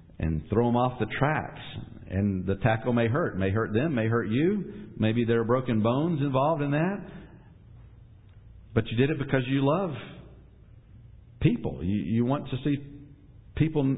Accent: American